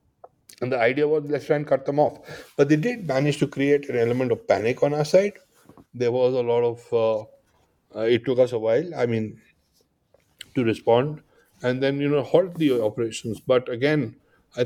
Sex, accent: male, Indian